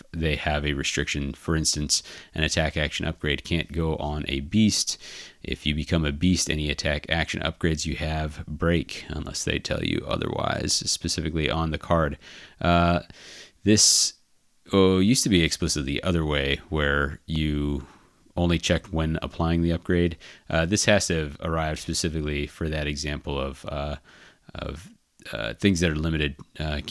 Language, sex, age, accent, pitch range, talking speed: English, male, 30-49, American, 75-85 Hz, 165 wpm